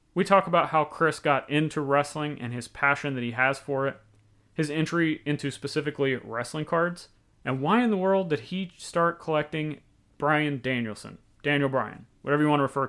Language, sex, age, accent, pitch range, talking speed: English, male, 30-49, American, 130-165 Hz, 185 wpm